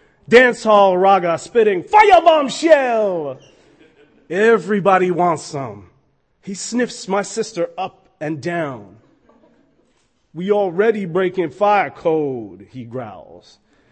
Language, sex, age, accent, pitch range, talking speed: English, male, 30-49, American, 180-255 Hz, 100 wpm